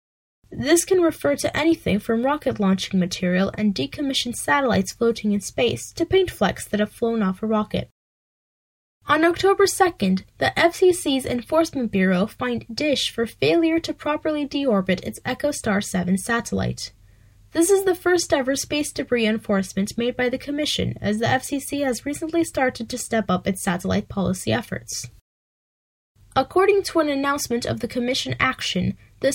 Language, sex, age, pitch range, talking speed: English, female, 10-29, 195-290 Hz, 155 wpm